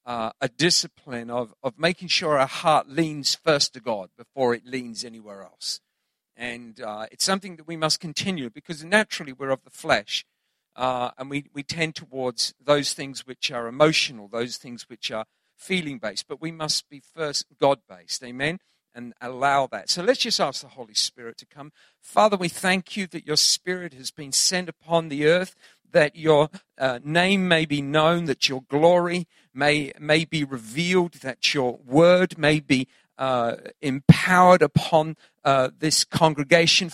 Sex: male